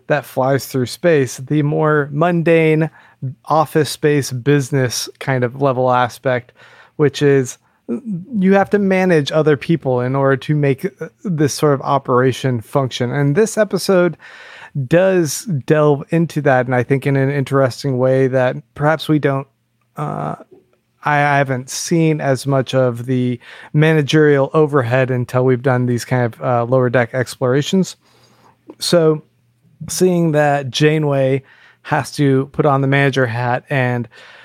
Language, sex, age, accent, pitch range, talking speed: English, male, 30-49, American, 130-155 Hz, 140 wpm